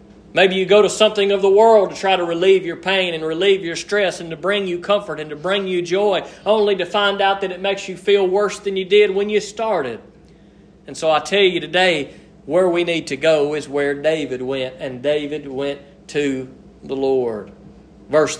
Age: 40-59